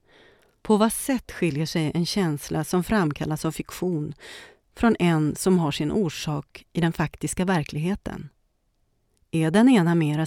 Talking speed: 145 wpm